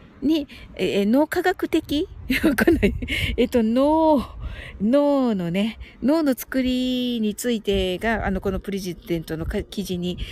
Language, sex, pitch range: Japanese, female, 190-255 Hz